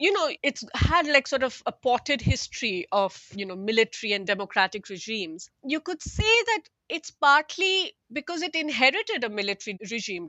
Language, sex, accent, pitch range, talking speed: English, female, Indian, 200-280 Hz, 170 wpm